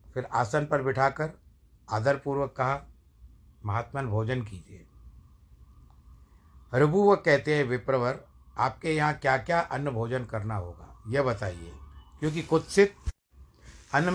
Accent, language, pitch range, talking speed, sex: native, Hindi, 100-140 Hz, 110 wpm, male